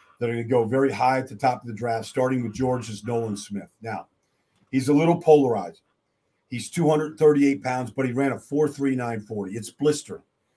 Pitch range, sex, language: 125-165 Hz, male, English